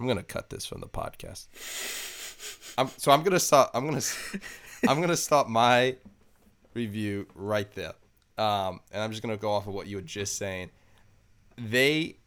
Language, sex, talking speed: English, male, 170 wpm